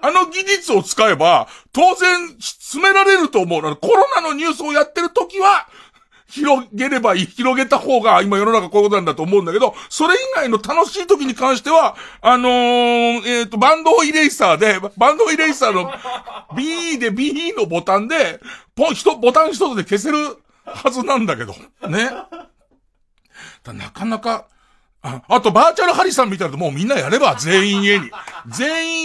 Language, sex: Japanese, male